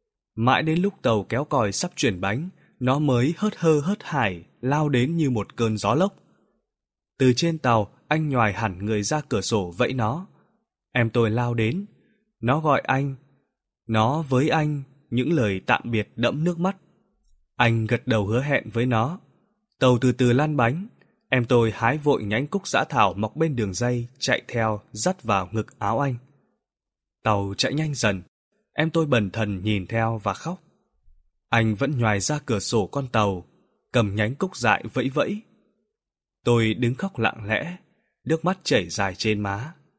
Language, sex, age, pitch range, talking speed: Vietnamese, male, 20-39, 110-145 Hz, 180 wpm